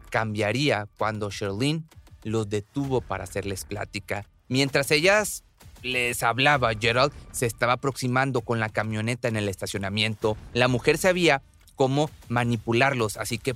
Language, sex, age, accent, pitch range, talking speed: Spanish, male, 30-49, Mexican, 105-135 Hz, 130 wpm